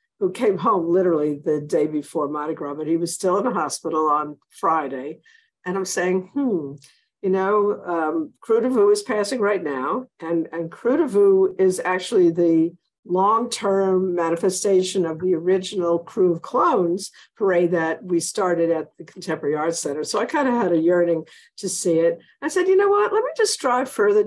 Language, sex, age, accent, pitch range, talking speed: English, female, 50-69, American, 170-230 Hz, 180 wpm